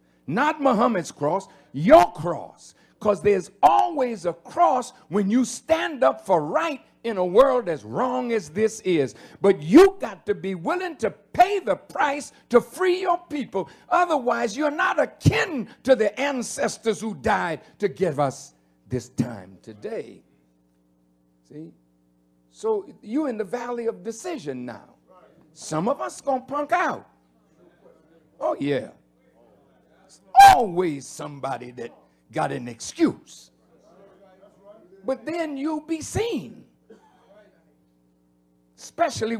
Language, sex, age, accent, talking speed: English, male, 60-79, American, 125 wpm